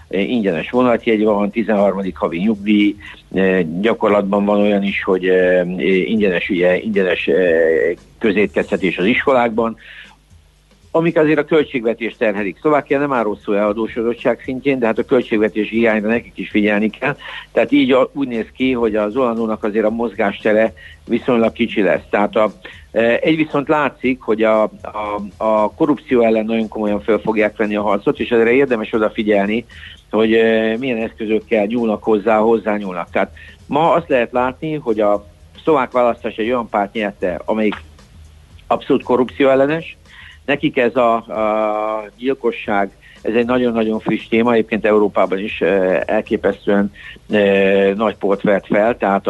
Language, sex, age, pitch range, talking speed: Hungarian, male, 60-79, 100-120 Hz, 145 wpm